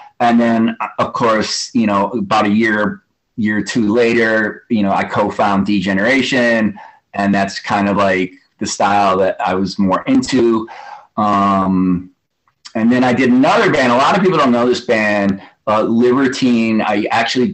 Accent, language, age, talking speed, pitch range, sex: American, English, 30-49, 170 wpm, 100-125 Hz, male